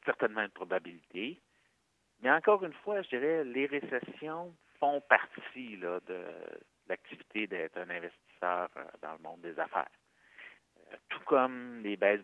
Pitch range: 95-120 Hz